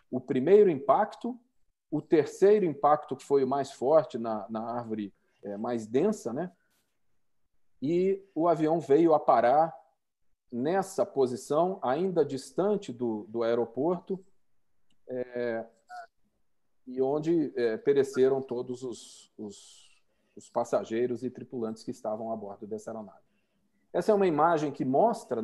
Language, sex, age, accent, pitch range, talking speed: Portuguese, male, 40-59, Brazilian, 125-195 Hz, 125 wpm